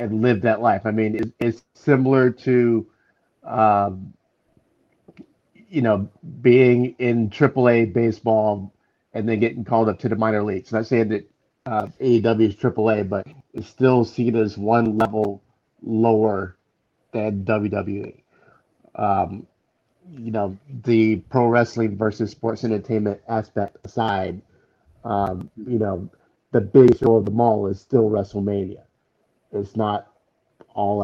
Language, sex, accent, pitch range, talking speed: English, male, American, 105-120 Hz, 135 wpm